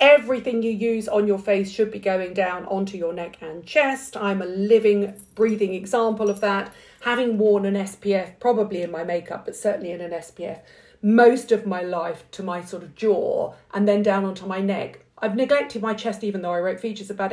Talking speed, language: 210 wpm, English